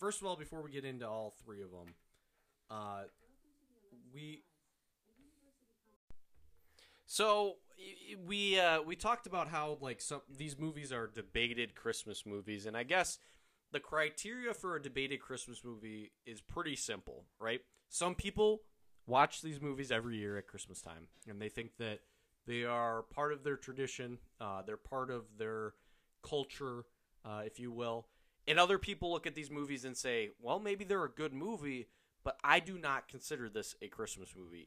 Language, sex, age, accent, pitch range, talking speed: English, male, 20-39, American, 110-165 Hz, 165 wpm